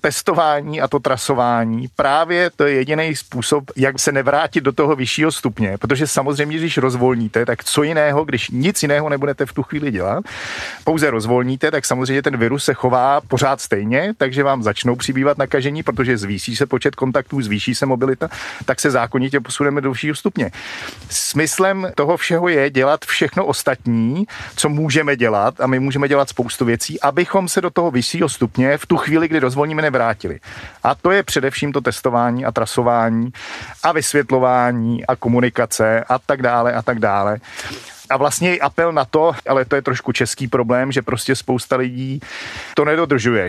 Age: 40-59